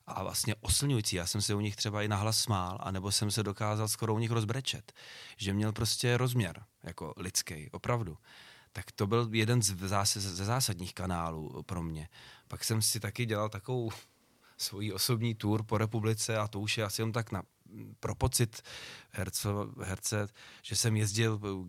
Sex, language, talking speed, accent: male, Czech, 170 wpm, native